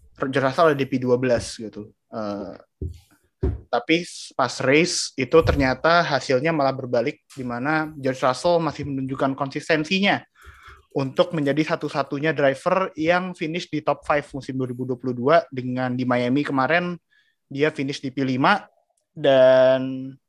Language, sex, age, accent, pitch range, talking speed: Indonesian, male, 20-39, native, 130-160 Hz, 120 wpm